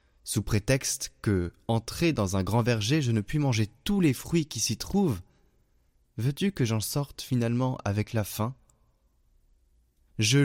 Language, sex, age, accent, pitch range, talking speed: French, male, 20-39, French, 90-135 Hz, 155 wpm